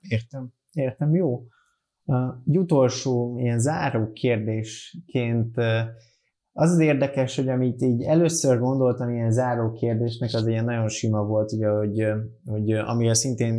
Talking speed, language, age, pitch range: 130 wpm, Hungarian, 20-39, 105-120 Hz